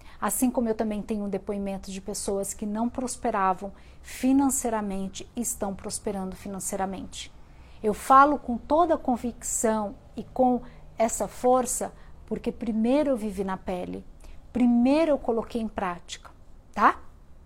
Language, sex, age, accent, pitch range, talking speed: Portuguese, female, 50-69, Brazilian, 200-255 Hz, 130 wpm